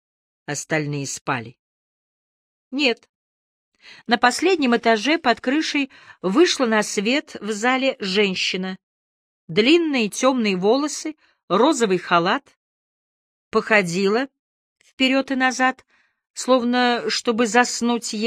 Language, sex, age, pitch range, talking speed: English, female, 40-59, 180-235 Hz, 85 wpm